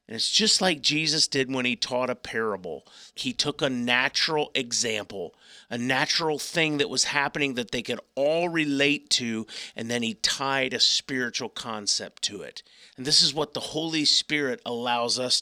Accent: American